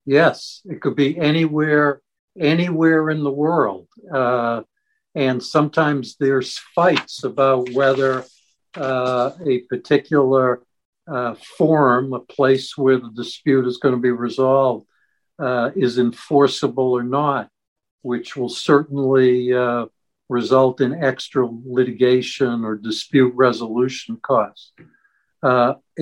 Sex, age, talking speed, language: male, 60-79, 115 wpm, English